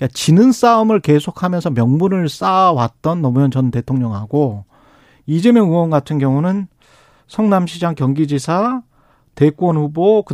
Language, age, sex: Korean, 40-59, male